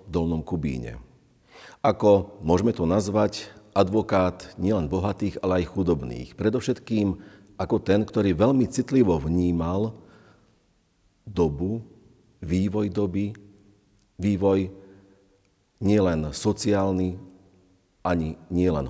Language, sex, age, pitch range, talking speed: Slovak, male, 50-69, 80-100 Hz, 90 wpm